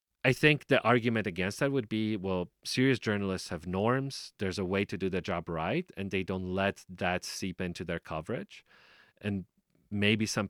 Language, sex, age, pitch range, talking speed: English, male, 30-49, 100-120 Hz, 190 wpm